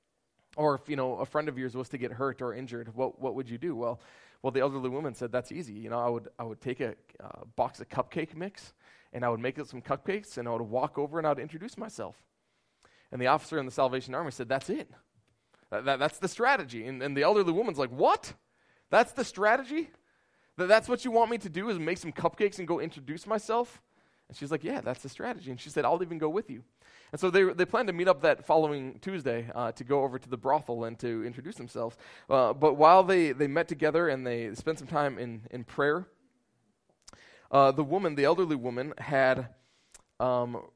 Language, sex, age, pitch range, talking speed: English, male, 20-39, 125-175 Hz, 235 wpm